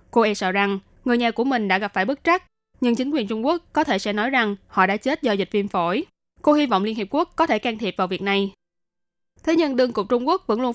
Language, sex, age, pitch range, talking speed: Vietnamese, female, 10-29, 205-255 Hz, 285 wpm